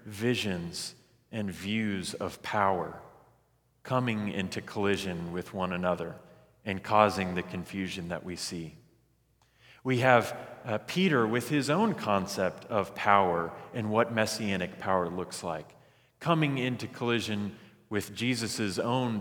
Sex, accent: male, American